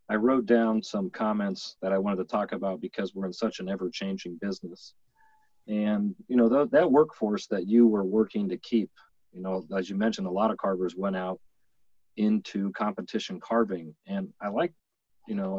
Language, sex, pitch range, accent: English, male, 95-120 Hz, American